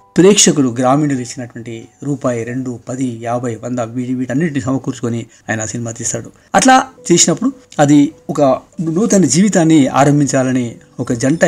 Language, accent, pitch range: Telugu, native, 125-150 Hz